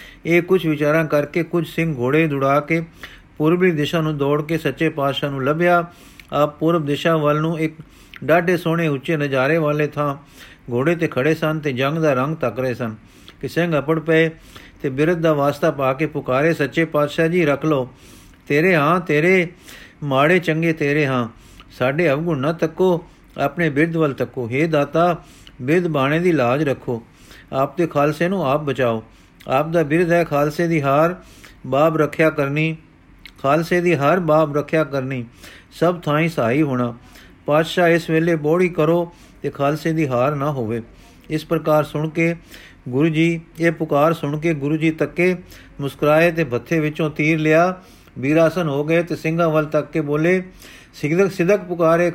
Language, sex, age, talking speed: Punjabi, male, 50-69, 165 wpm